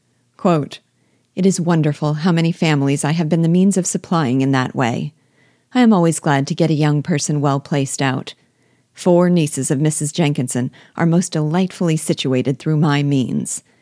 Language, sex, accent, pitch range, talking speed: English, female, American, 145-175 Hz, 180 wpm